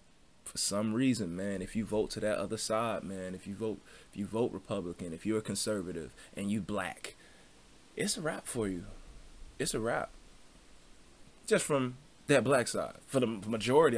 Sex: male